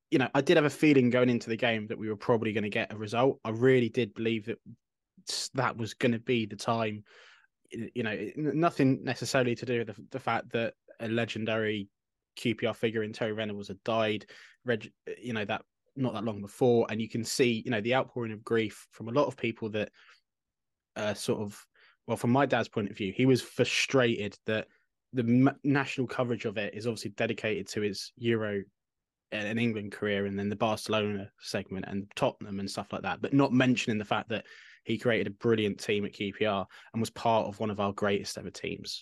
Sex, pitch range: male, 105-130 Hz